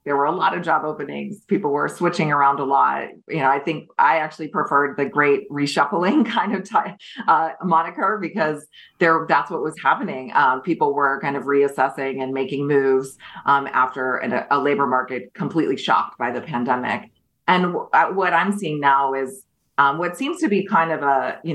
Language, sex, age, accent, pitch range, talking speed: English, female, 30-49, American, 140-165 Hz, 195 wpm